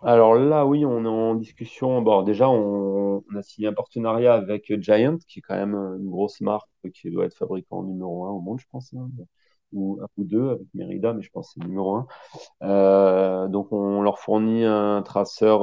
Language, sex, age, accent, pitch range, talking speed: French, male, 30-49, French, 95-110 Hz, 210 wpm